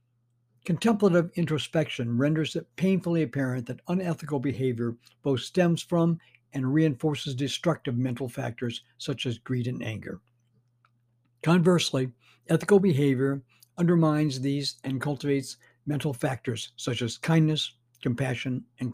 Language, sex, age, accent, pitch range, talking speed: English, male, 60-79, American, 120-155 Hz, 115 wpm